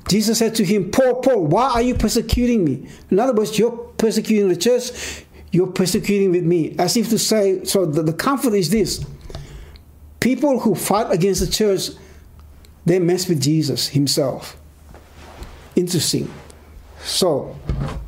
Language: English